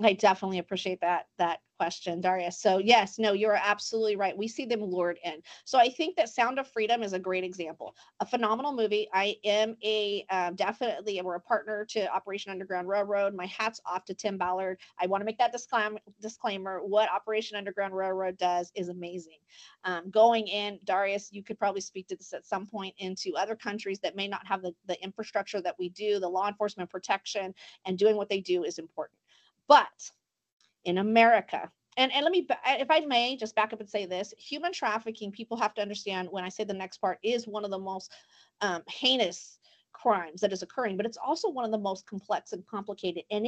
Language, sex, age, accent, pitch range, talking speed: English, female, 40-59, American, 185-220 Hz, 210 wpm